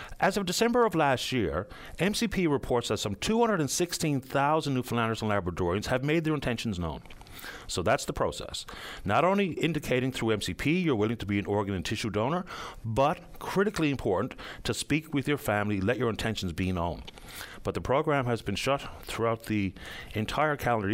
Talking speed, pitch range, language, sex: 170 wpm, 100-155 Hz, English, male